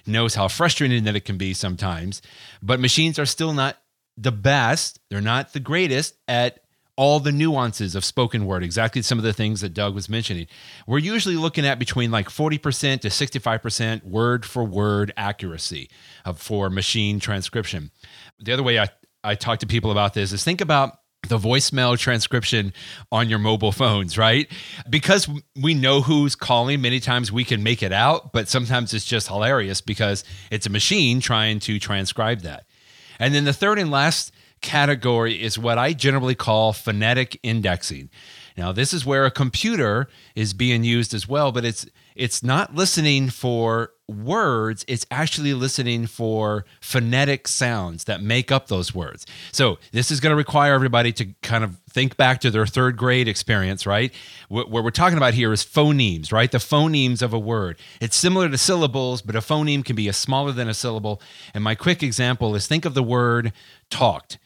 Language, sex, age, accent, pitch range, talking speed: English, male, 30-49, American, 105-135 Hz, 180 wpm